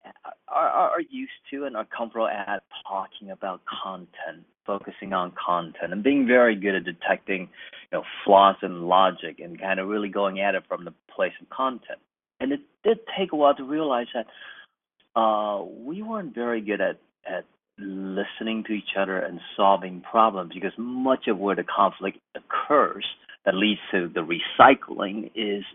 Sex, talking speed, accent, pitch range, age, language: male, 170 wpm, American, 95-125 Hz, 40-59, English